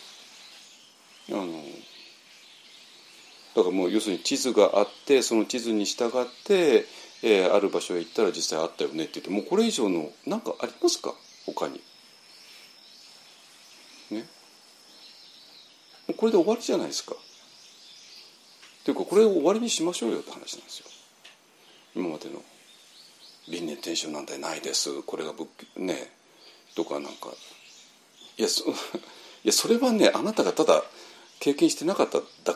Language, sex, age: Japanese, male, 60-79